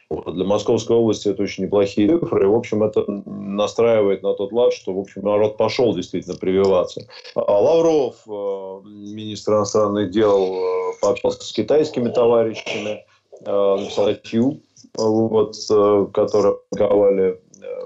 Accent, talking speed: native, 115 wpm